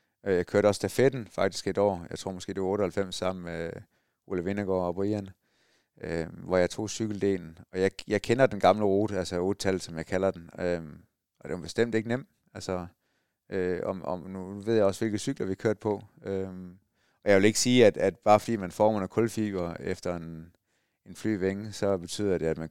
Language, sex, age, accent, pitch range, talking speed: Danish, male, 30-49, native, 95-110 Hz, 205 wpm